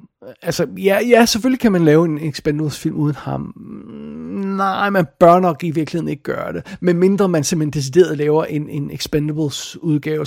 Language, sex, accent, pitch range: Danish, male, native, 150-185 Hz